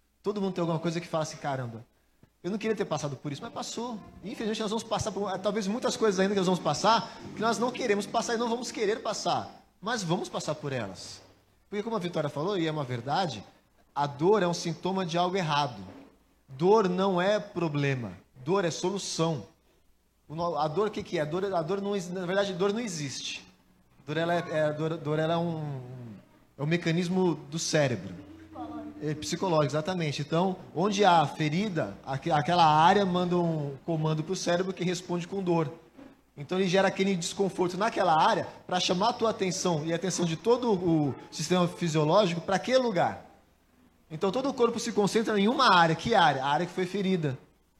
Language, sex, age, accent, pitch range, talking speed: Portuguese, male, 20-39, Brazilian, 150-195 Hz, 200 wpm